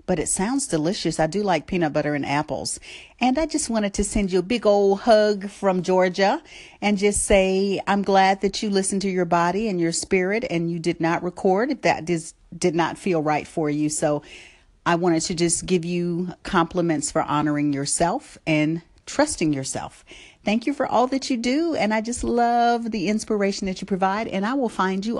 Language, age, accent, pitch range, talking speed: English, 50-69, American, 160-215 Hz, 205 wpm